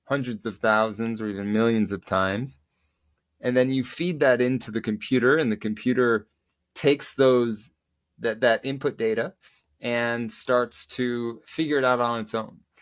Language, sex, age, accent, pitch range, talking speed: English, male, 20-39, American, 100-125 Hz, 160 wpm